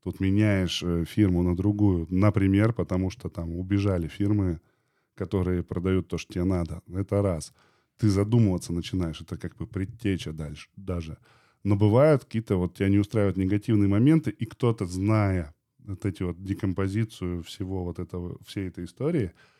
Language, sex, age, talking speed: Russian, male, 10-29, 155 wpm